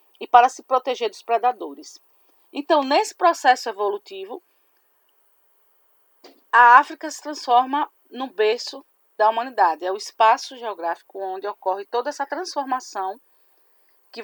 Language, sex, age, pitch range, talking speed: Portuguese, female, 40-59, 220-295 Hz, 120 wpm